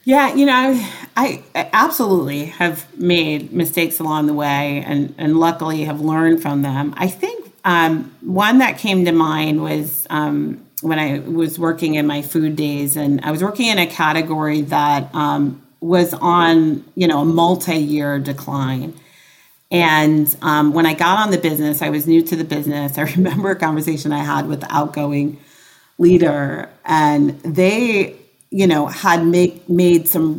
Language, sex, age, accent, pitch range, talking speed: English, female, 40-59, American, 145-170 Hz, 165 wpm